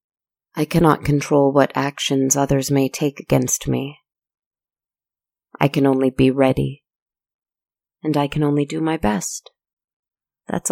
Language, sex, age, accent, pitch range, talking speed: English, female, 30-49, American, 140-170 Hz, 130 wpm